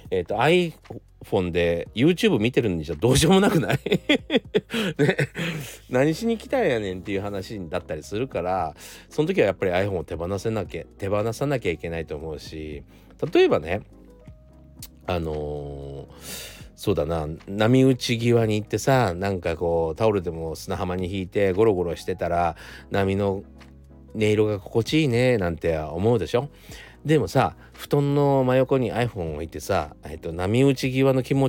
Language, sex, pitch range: Japanese, male, 85-135 Hz